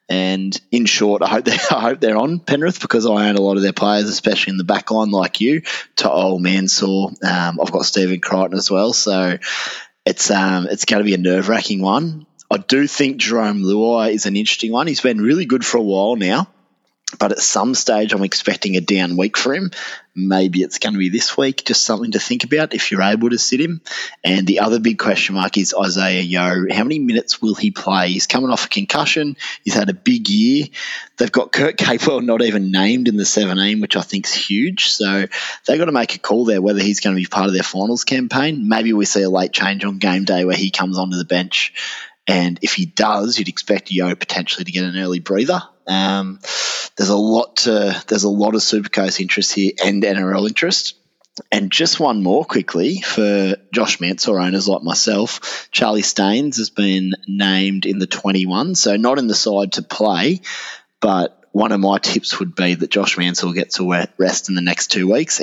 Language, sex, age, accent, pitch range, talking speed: English, male, 20-39, Australian, 95-110 Hz, 215 wpm